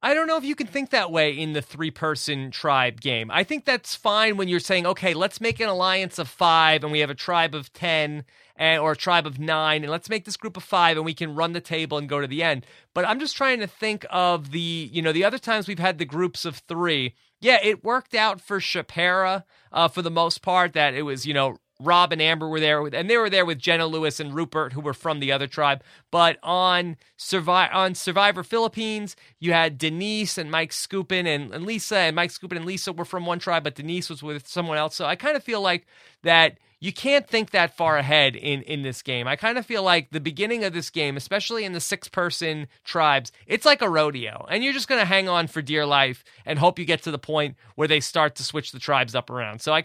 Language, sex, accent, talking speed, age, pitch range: English, male, American, 250 wpm, 30-49, 150-190 Hz